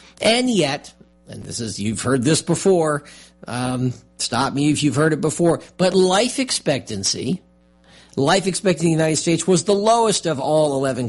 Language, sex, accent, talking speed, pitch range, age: English, male, American, 175 wpm, 125-170 Hz, 50-69